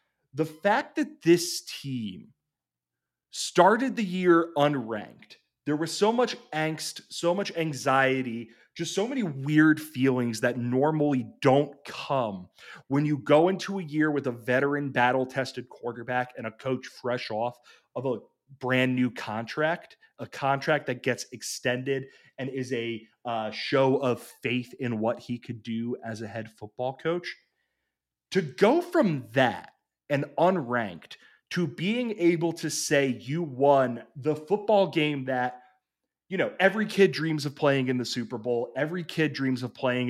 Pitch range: 120-155 Hz